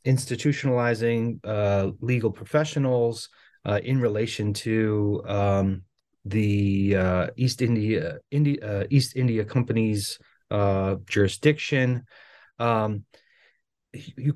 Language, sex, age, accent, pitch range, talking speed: English, male, 30-49, American, 105-125 Hz, 90 wpm